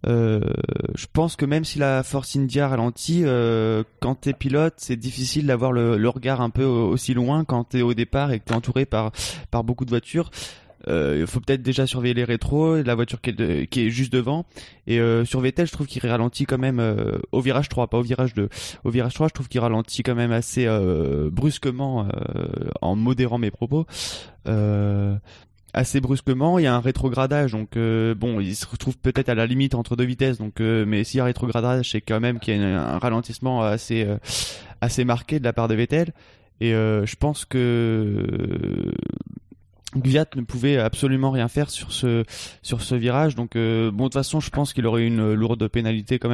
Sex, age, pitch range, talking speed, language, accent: male, 20-39, 115-130 Hz, 215 wpm, French, French